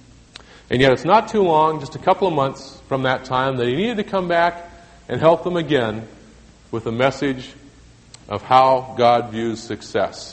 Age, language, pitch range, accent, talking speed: 40-59, English, 120-170 Hz, American, 185 wpm